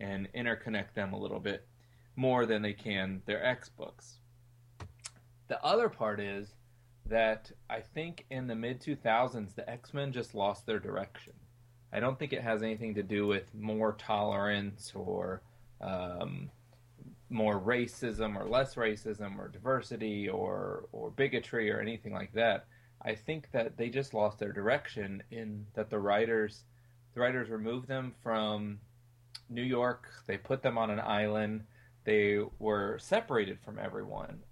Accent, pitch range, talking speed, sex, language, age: American, 110-125 Hz, 150 wpm, male, English, 20-39